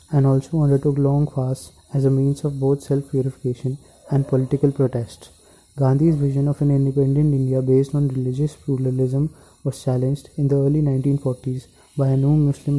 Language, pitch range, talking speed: English, 130-145 Hz, 165 wpm